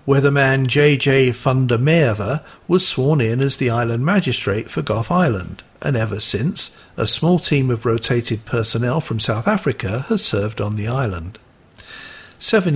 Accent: British